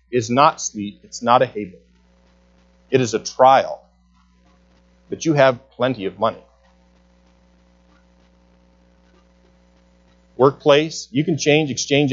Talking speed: 110 wpm